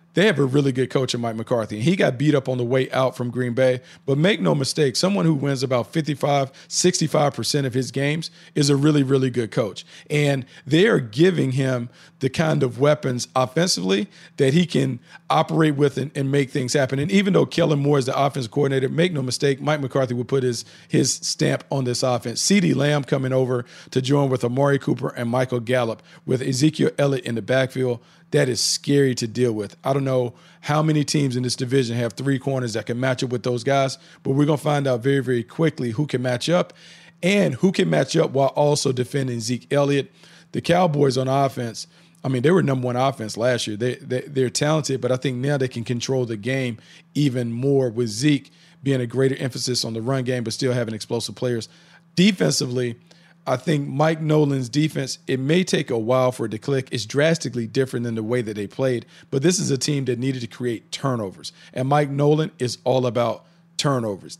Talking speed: 215 wpm